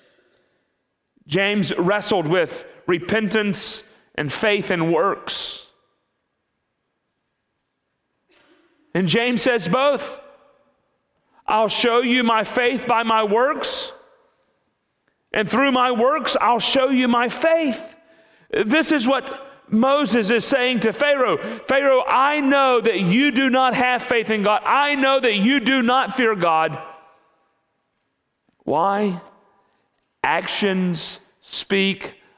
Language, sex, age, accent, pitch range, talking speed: English, male, 40-59, American, 155-255 Hz, 110 wpm